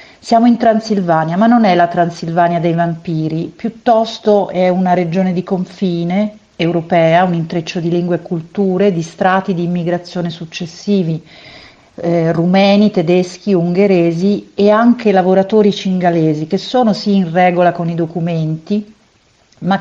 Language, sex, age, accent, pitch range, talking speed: Italian, female, 50-69, native, 165-200 Hz, 135 wpm